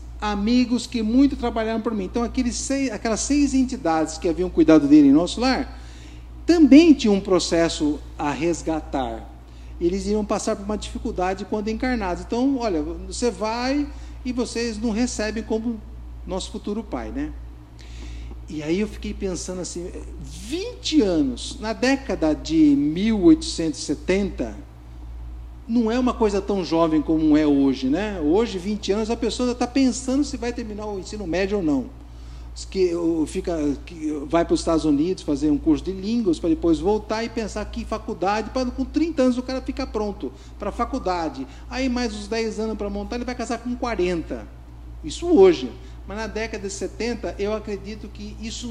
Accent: Brazilian